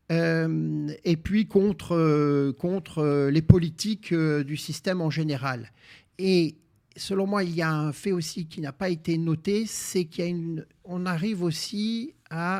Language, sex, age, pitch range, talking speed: French, male, 50-69, 145-180 Hz, 155 wpm